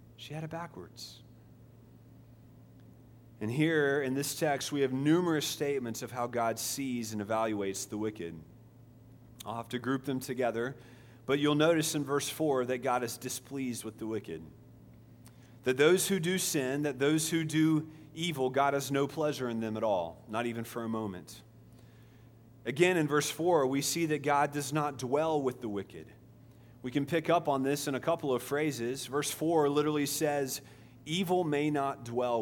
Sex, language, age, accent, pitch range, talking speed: male, English, 30-49, American, 115-145 Hz, 180 wpm